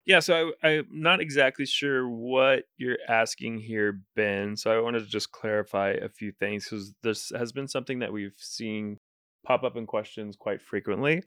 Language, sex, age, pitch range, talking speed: English, male, 20-39, 105-130 Hz, 190 wpm